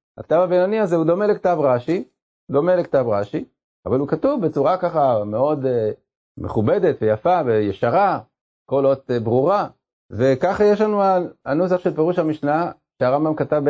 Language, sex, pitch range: Hebrew, male, 120-155 Hz